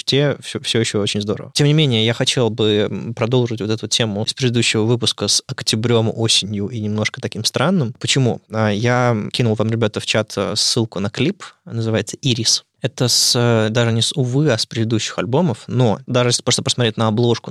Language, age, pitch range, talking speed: Russian, 20-39, 110-125 Hz, 190 wpm